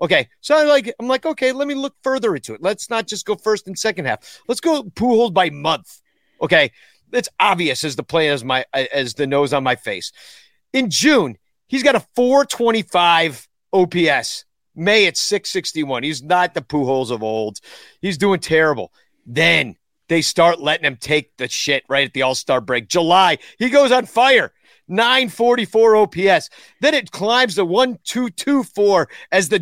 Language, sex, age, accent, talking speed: English, male, 40-59, American, 175 wpm